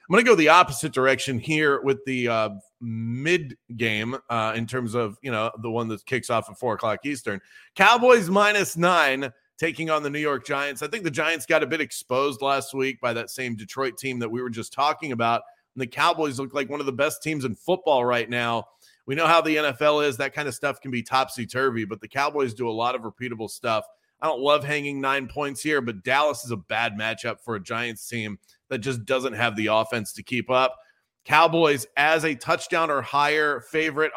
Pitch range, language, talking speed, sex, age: 120-150 Hz, English, 225 wpm, male, 30-49